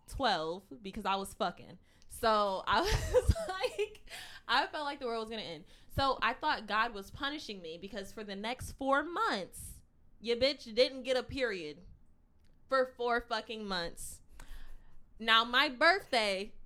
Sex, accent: female, American